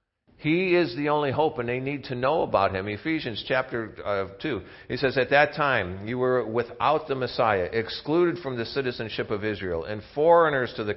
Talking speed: 190 wpm